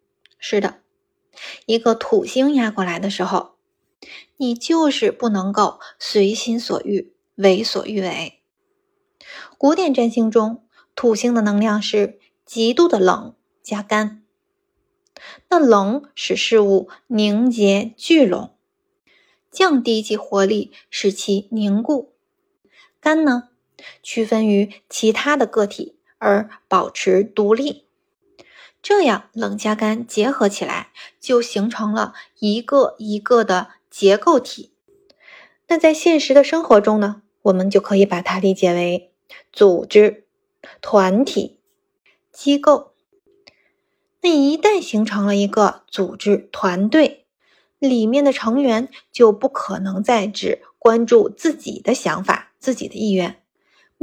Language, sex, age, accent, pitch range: Chinese, female, 20-39, native, 210-335 Hz